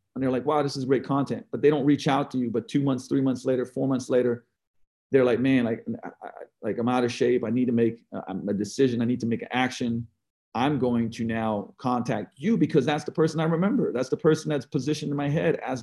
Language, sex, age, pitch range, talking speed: English, male, 40-59, 115-145 Hz, 245 wpm